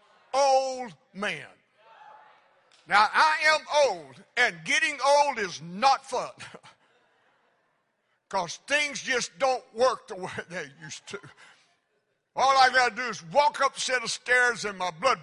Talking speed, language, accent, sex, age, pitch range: 140 wpm, English, American, male, 60-79, 210-275 Hz